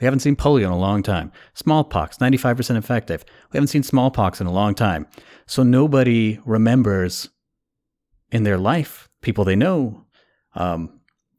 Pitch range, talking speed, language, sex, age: 90-110 Hz, 155 wpm, English, male, 30-49